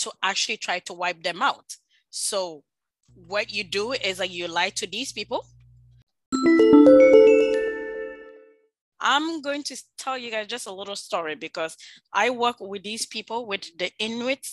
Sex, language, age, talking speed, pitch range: female, English, 20-39, 155 wpm, 190-240 Hz